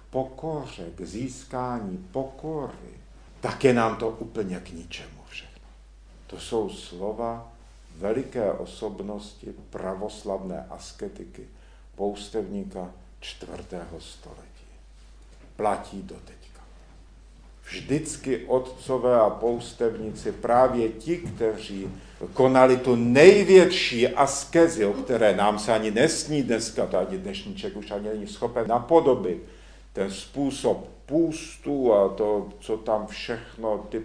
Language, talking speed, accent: Czech, 100 wpm, native